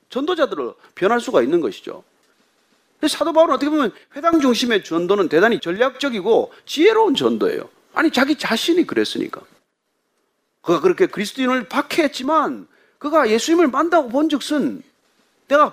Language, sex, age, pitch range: Korean, male, 40-59, 240-340 Hz